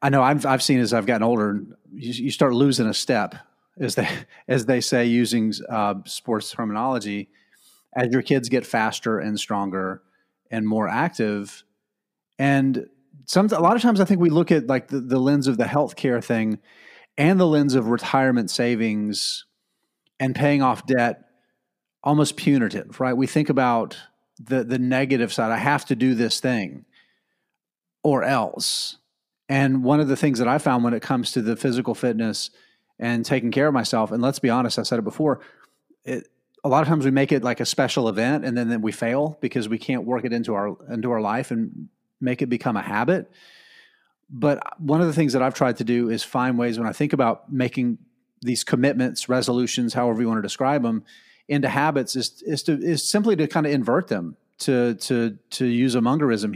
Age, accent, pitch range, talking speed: 30-49, American, 115-140 Hz, 200 wpm